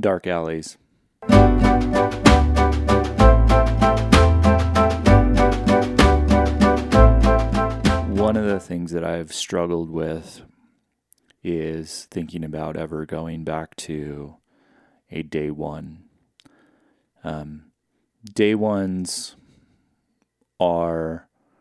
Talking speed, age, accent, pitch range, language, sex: 65 wpm, 30-49, American, 80-100 Hz, English, male